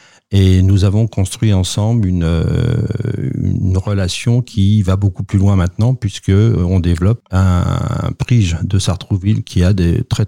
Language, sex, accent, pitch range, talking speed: French, male, French, 95-115 Hz, 150 wpm